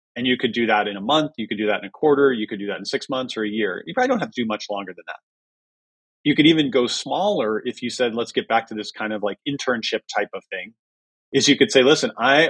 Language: English